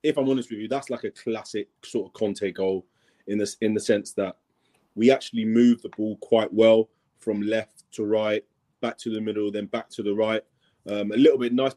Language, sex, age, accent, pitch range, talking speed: English, male, 30-49, British, 105-135 Hz, 225 wpm